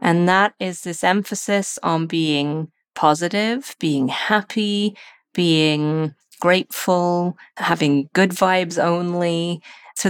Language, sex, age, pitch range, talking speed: English, female, 30-49, 165-205 Hz, 100 wpm